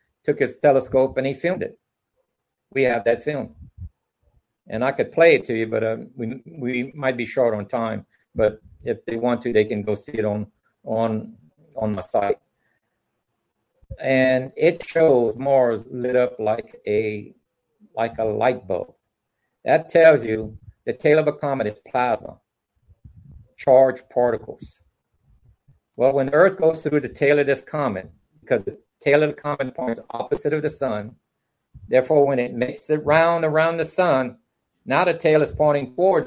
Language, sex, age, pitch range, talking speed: English, male, 50-69, 120-150 Hz, 165 wpm